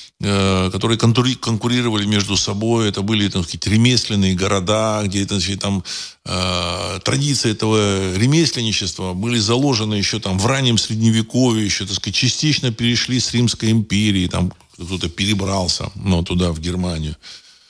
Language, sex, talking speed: Russian, male, 130 wpm